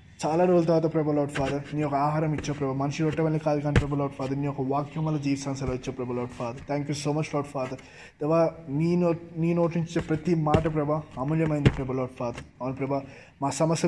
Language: English